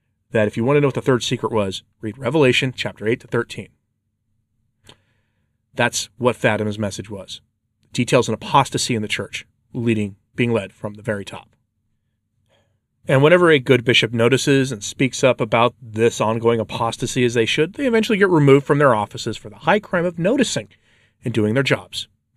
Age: 40-59